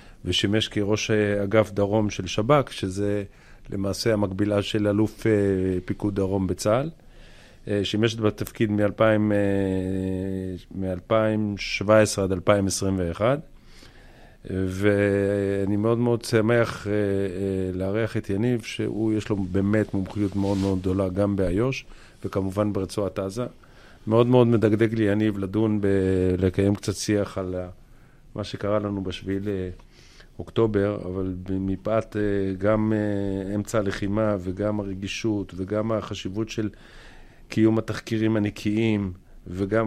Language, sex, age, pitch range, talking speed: Hebrew, male, 40-59, 95-110 Hz, 110 wpm